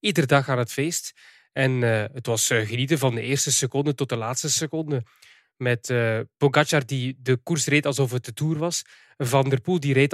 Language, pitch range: English, 130-155 Hz